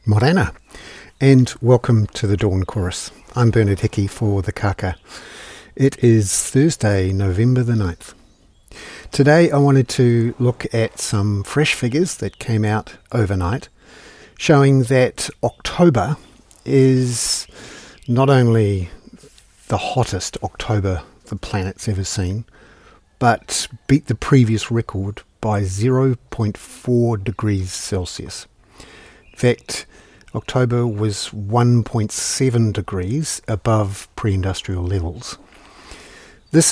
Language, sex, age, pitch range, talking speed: English, male, 50-69, 95-120 Hz, 105 wpm